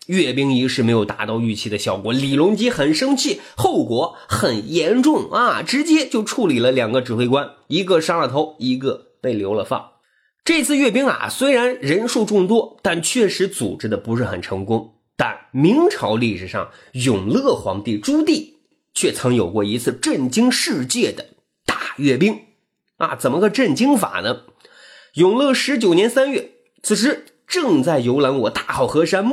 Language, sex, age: Chinese, male, 30-49